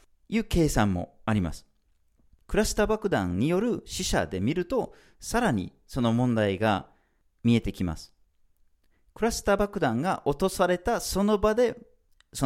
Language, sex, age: Japanese, male, 40-59